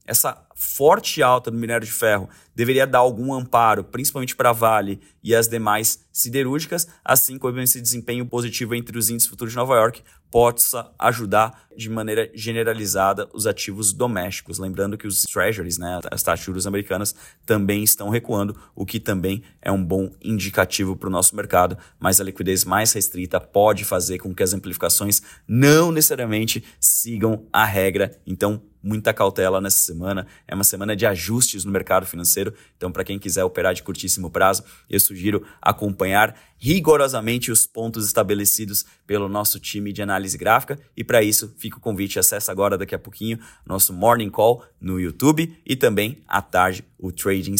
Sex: male